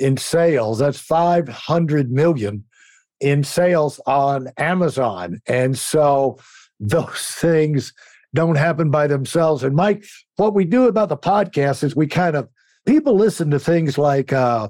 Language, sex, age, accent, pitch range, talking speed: English, male, 60-79, American, 135-170 Hz, 145 wpm